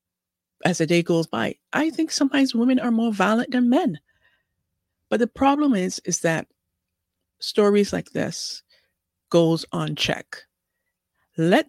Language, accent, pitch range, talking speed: English, American, 150-190 Hz, 140 wpm